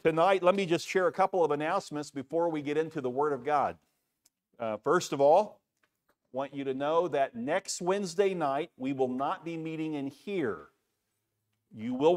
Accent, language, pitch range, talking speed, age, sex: American, English, 130-160 Hz, 190 wpm, 50-69, male